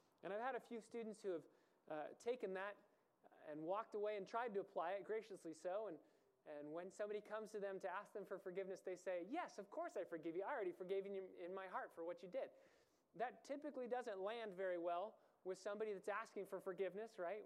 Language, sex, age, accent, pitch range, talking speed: English, male, 20-39, American, 170-210 Hz, 225 wpm